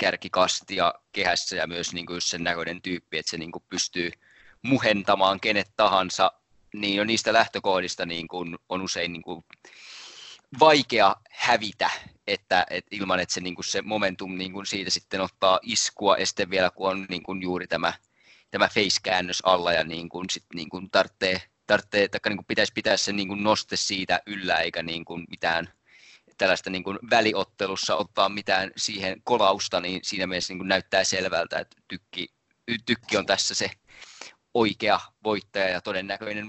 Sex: male